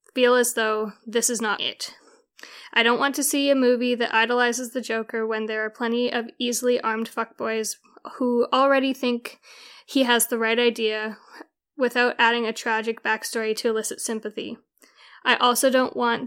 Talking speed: 170 wpm